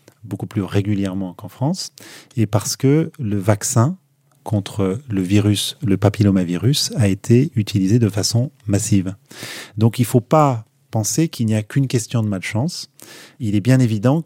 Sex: male